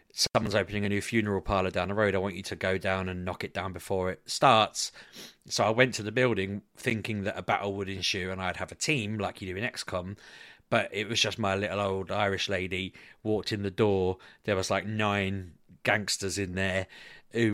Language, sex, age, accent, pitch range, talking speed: English, male, 30-49, British, 95-110 Hz, 220 wpm